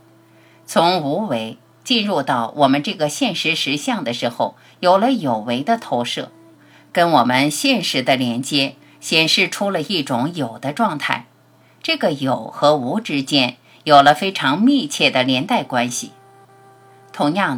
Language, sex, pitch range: Chinese, female, 130-215 Hz